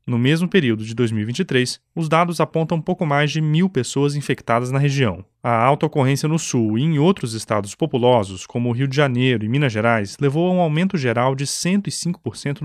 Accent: Brazilian